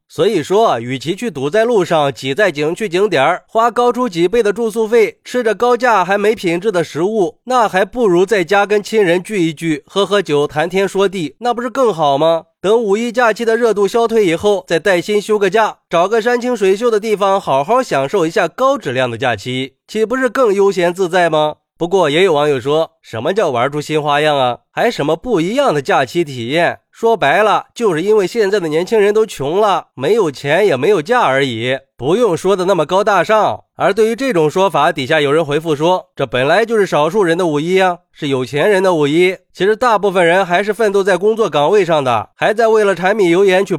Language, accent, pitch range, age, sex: Chinese, native, 155-225 Hz, 30-49, male